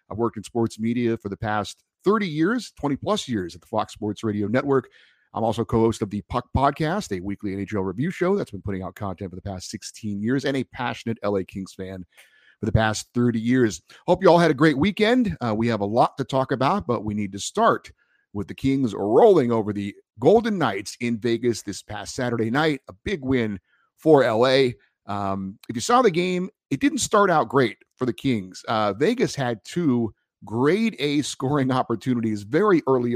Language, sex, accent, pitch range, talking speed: English, male, American, 105-135 Hz, 205 wpm